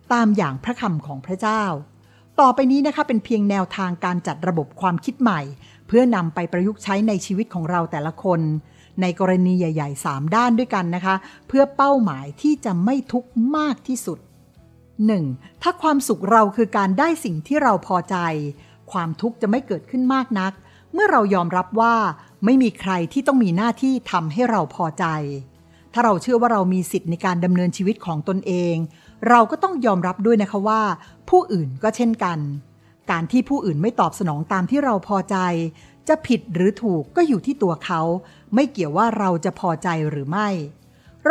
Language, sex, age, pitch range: Thai, female, 60-79, 170-235 Hz